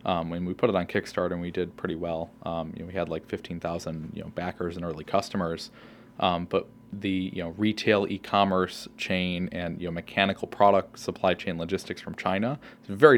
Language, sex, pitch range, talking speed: English, male, 90-100 Hz, 205 wpm